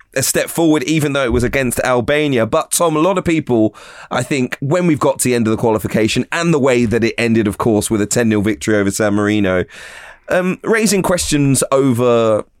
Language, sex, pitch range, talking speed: English, male, 115-145 Hz, 215 wpm